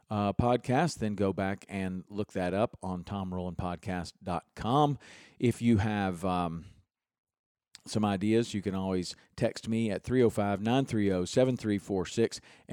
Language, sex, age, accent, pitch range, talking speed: English, male, 40-59, American, 95-125 Hz, 115 wpm